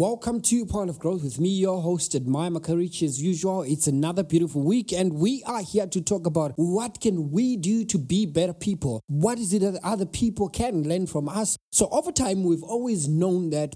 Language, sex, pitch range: English, male, 155-200 Hz